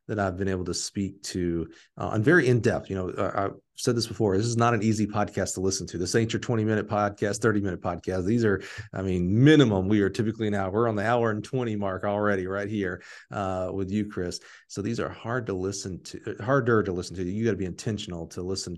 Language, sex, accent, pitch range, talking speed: English, male, American, 95-110 Hz, 250 wpm